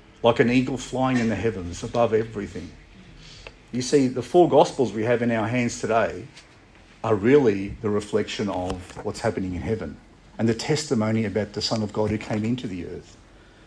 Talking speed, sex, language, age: 185 wpm, male, English, 50-69